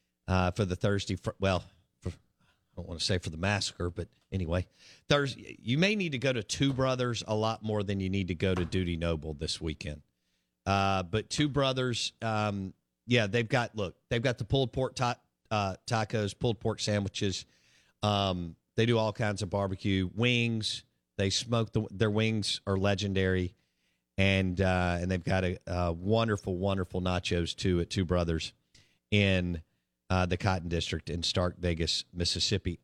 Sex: male